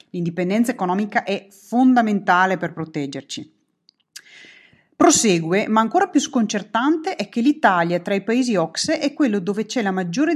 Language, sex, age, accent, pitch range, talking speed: Italian, female, 30-49, native, 180-235 Hz, 140 wpm